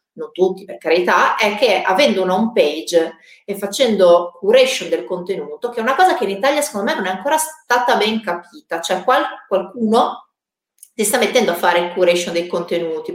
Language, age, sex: Italian, 40-59, female